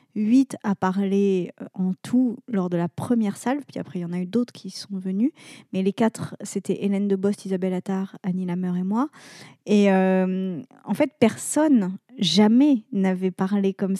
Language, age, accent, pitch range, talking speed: French, 20-39, French, 185-220 Hz, 180 wpm